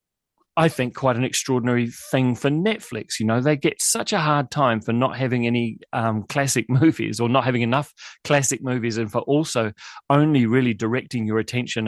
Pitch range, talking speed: 110-140 Hz, 185 wpm